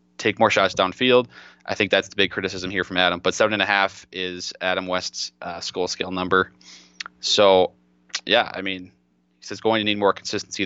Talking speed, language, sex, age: 205 wpm, English, male, 20-39